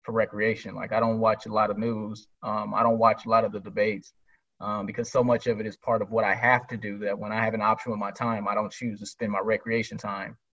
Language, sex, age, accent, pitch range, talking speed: English, male, 20-39, American, 115-130 Hz, 285 wpm